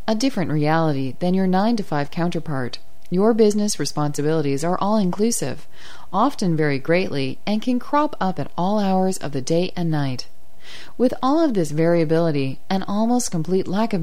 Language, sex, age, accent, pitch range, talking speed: English, female, 30-49, American, 150-220 Hz, 160 wpm